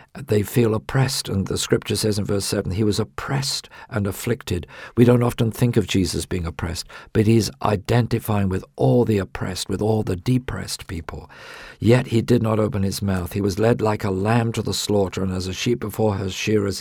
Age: 50-69